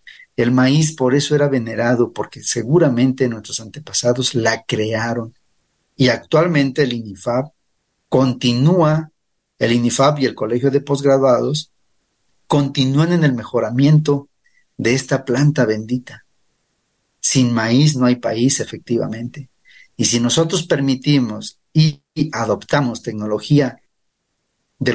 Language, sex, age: Spanish, male, 40-59